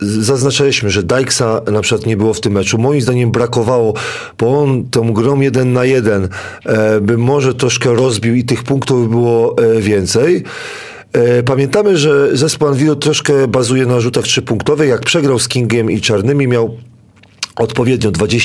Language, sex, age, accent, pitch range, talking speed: Polish, male, 40-59, native, 110-135 Hz, 155 wpm